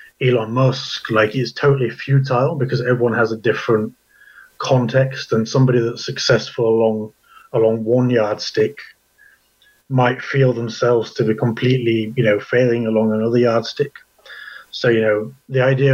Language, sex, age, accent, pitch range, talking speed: English, male, 30-49, British, 115-135 Hz, 140 wpm